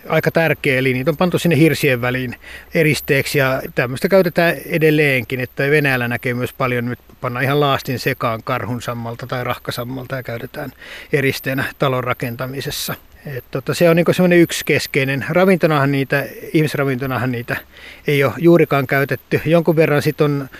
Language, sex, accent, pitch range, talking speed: Finnish, male, native, 125-145 Hz, 150 wpm